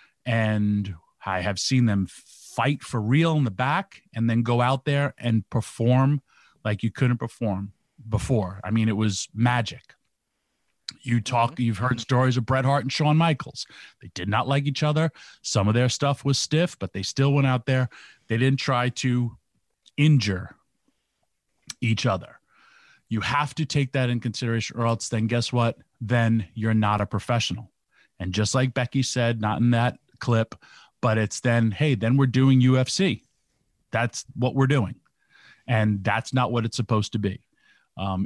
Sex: male